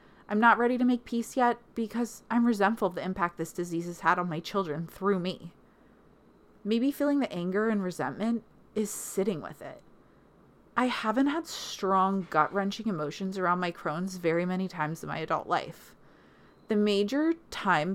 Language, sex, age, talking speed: English, female, 30-49, 170 wpm